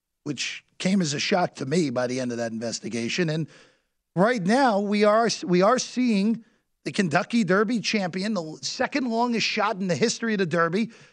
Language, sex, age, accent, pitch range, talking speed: English, male, 40-59, American, 150-215 Hz, 190 wpm